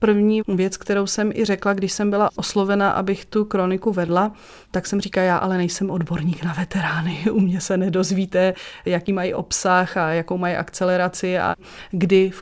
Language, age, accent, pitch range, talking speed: Czech, 30-49, native, 180-200 Hz, 180 wpm